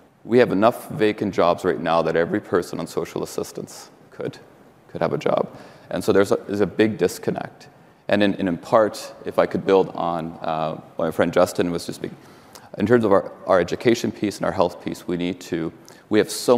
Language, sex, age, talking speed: English, male, 30-49, 215 wpm